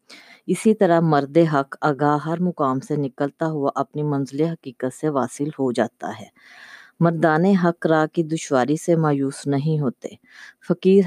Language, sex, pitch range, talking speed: Urdu, female, 140-170 Hz, 145 wpm